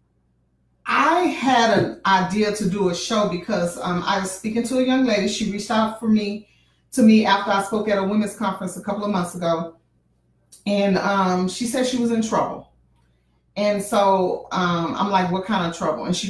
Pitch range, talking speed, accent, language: 175-215 Hz, 205 wpm, American, English